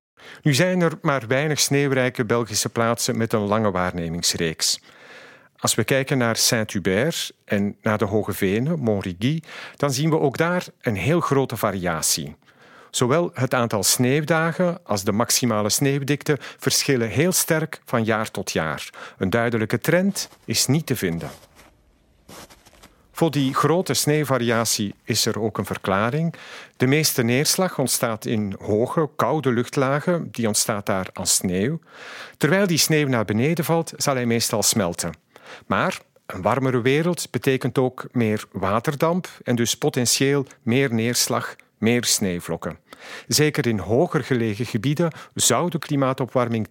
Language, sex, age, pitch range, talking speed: Dutch, male, 50-69, 110-145 Hz, 140 wpm